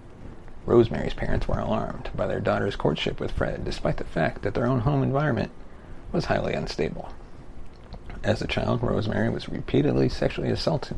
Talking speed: 160 wpm